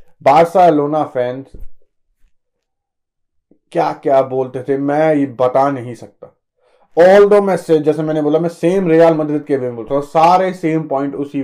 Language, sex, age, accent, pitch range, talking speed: Hindi, male, 30-49, native, 135-175 Hz, 120 wpm